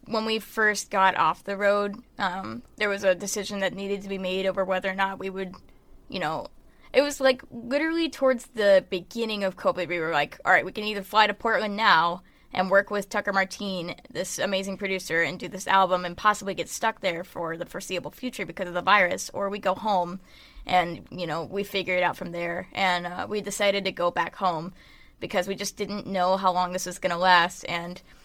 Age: 10-29